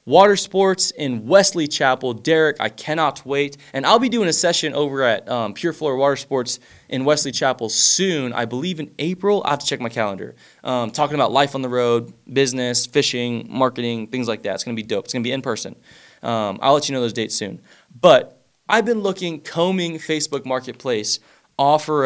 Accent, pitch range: American, 120-155 Hz